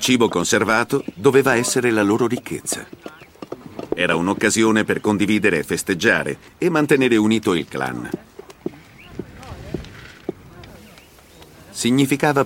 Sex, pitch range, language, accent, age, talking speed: male, 95-130 Hz, Italian, native, 50-69, 95 wpm